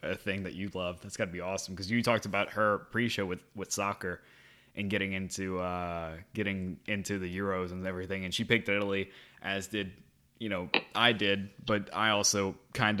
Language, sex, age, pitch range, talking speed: English, male, 20-39, 95-120 Hz, 195 wpm